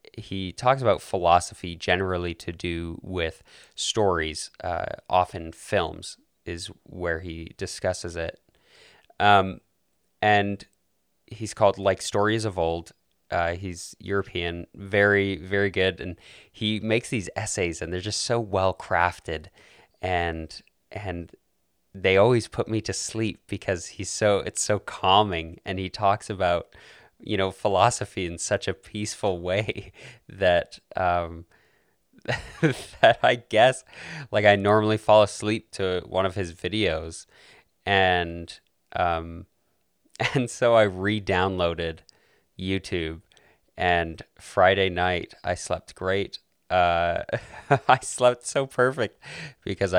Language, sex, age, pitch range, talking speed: English, male, 20-39, 85-105 Hz, 120 wpm